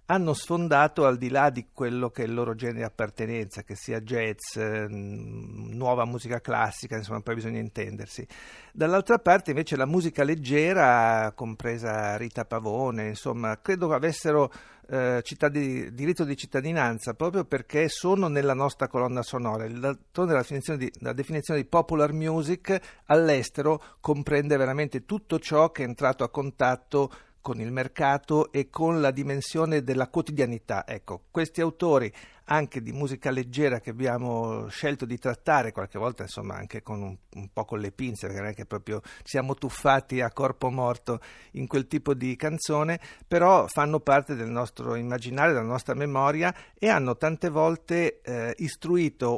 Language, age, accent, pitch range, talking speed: Italian, 50-69, native, 115-150 Hz, 155 wpm